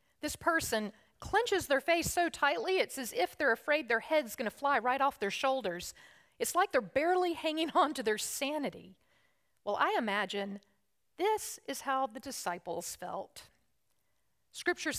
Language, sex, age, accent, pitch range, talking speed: English, female, 40-59, American, 230-315 Hz, 160 wpm